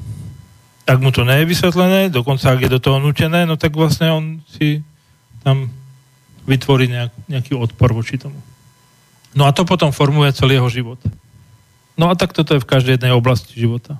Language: Slovak